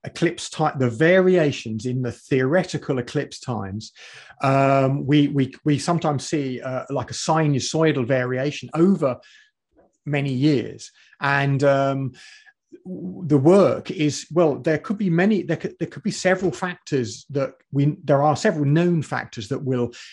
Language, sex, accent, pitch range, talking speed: English, male, British, 130-160 Hz, 150 wpm